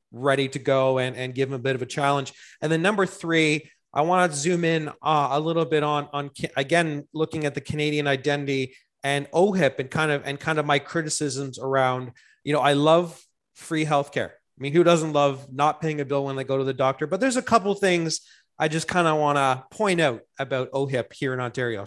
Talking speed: 230 wpm